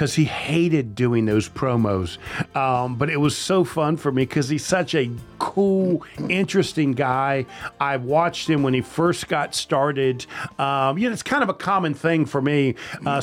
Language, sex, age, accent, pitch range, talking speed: English, male, 50-69, American, 130-160 Hz, 185 wpm